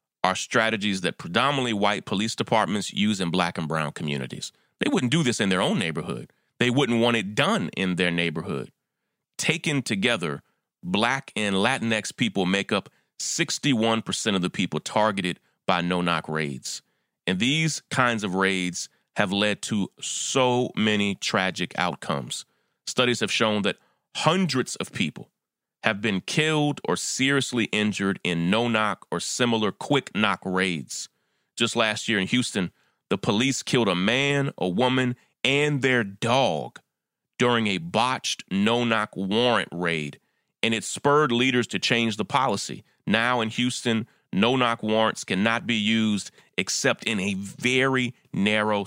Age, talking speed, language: 30-49, 145 wpm, English